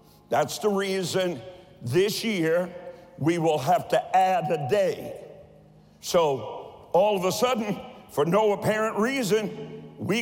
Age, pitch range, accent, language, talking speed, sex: 60-79, 150-200 Hz, American, English, 130 wpm, male